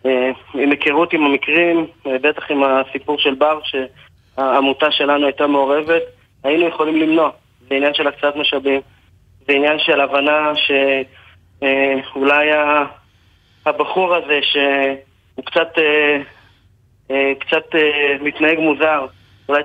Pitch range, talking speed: 135-155 Hz, 105 wpm